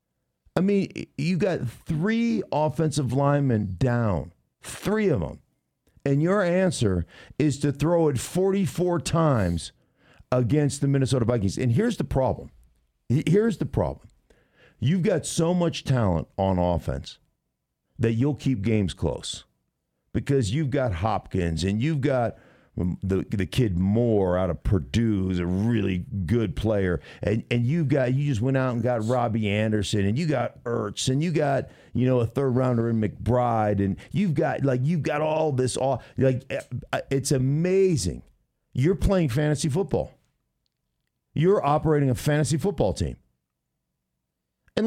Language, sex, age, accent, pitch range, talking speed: English, male, 50-69, American, 105-150 Hz, 150 wpm